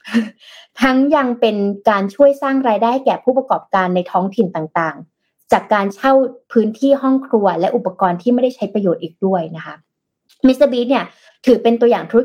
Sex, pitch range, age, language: female, 185-245 Hz, 20-39, Thai